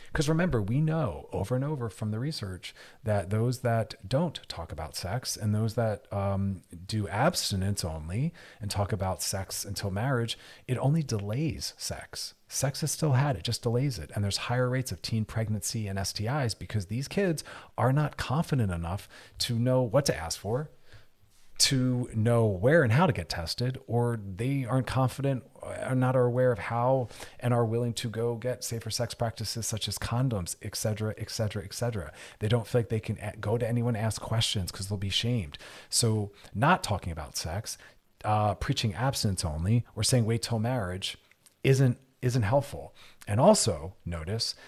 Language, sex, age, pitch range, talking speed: English, male, 40-59, 95-120 Hz, 185 wpm